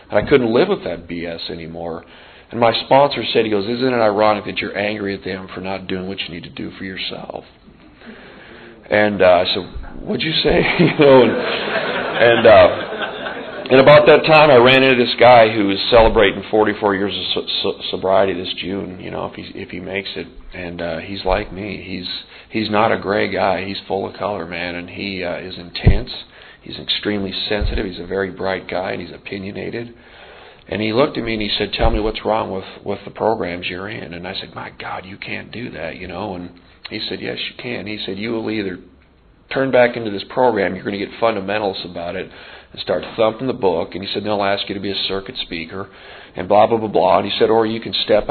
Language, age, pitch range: English, 40-59, 90-110 Hz